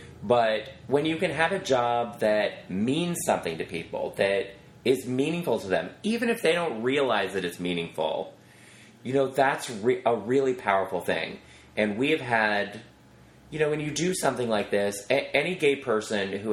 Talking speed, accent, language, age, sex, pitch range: 175 wpm, American, English, 30-49, male, 95-125 Hz